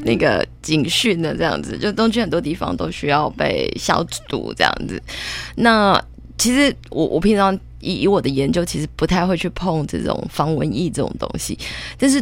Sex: female